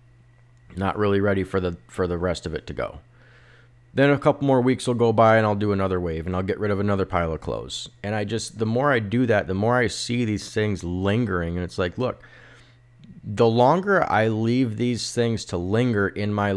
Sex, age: male, 30-49